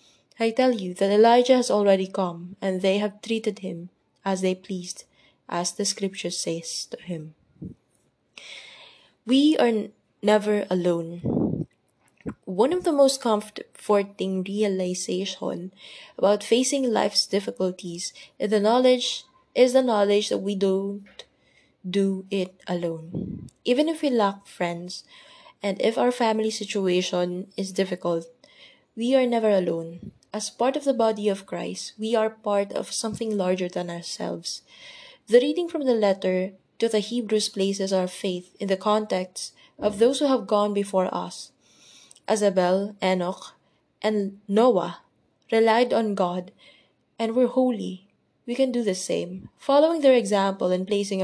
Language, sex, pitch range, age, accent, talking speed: English, female, 185-230 Hz, 20-39, Filipino, 145 wpm